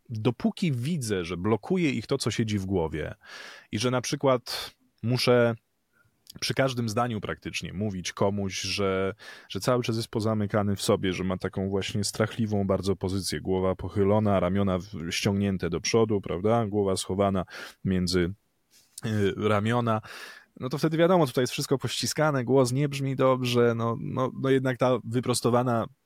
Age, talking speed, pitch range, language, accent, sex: 20-39, 150 wpm, 95-125 Hz, Polish, native, male